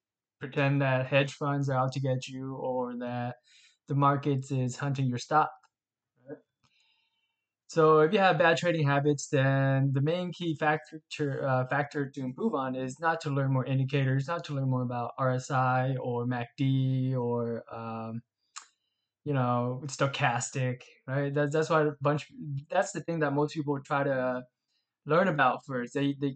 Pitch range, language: 130-150 Hz, English